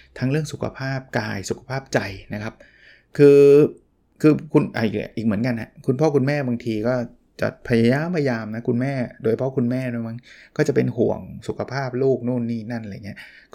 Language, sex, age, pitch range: Thai, male, 20-39, 115-145 Hz